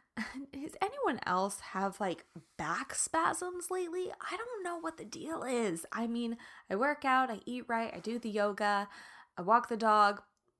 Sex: female